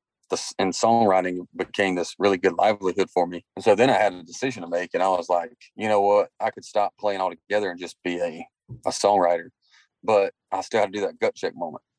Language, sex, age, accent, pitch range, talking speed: English, male, 30-49, American, 90-105 Hz, 230 wpm